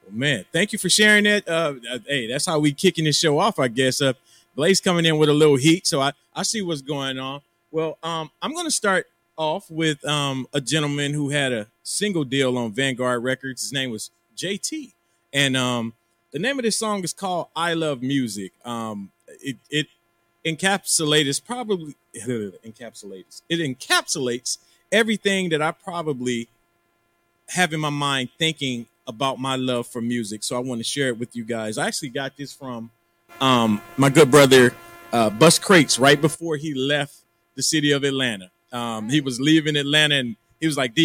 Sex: male